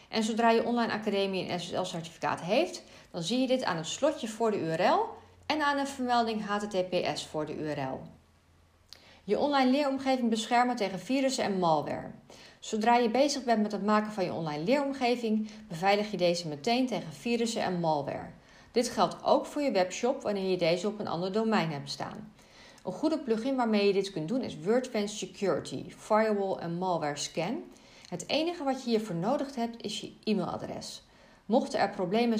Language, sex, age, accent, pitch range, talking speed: Dutch, female, 40-59, Dutch, 170-235 Hz, 180 wpm